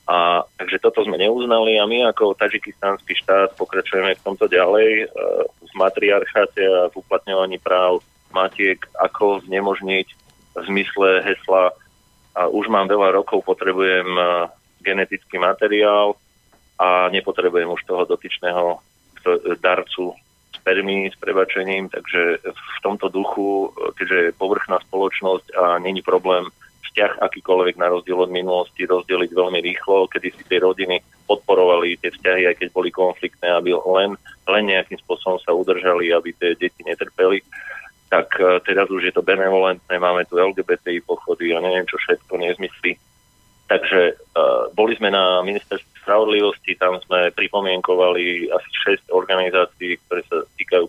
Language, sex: Slovak, male